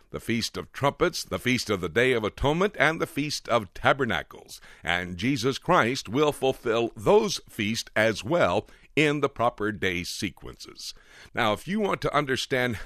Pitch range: 105-140 Hz